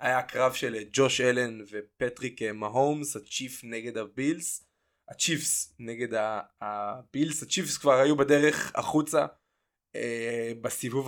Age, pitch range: 20-39, 120-150 Hz